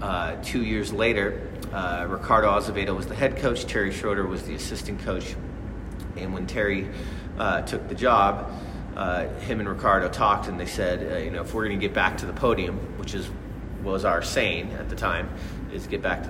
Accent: American